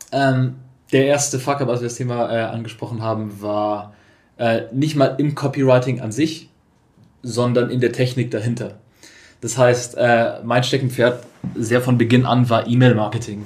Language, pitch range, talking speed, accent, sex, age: German, 115-130 Hz, 160 wpm, German, male, 20-39